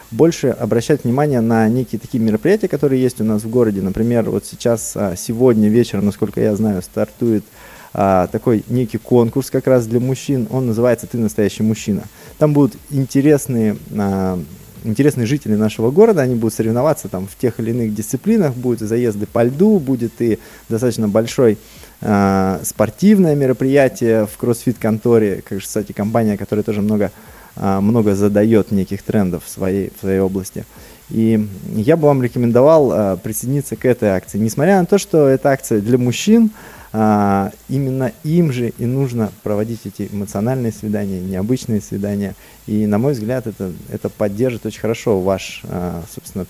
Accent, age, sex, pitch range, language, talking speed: native, 20-39, male, 105-130 Hz, Russian, 155 wpm